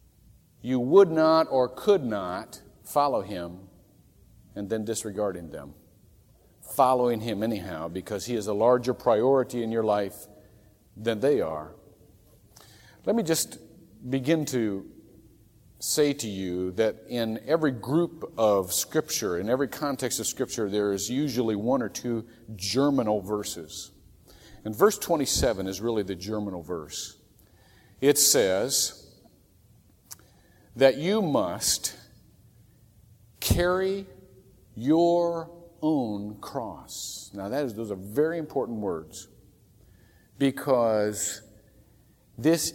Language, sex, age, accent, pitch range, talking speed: English, male, 50-69, American, 105-150 Hz, 115 wpm